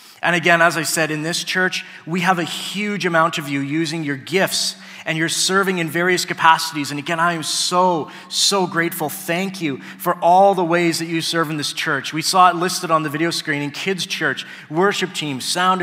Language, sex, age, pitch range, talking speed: English, male, 30-49, 155-190 Hz, 215 wpm